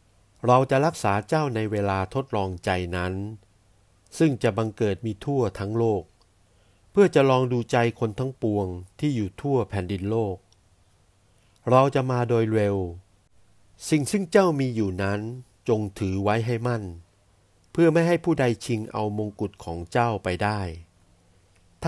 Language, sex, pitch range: Thai, male, 95-125 Hz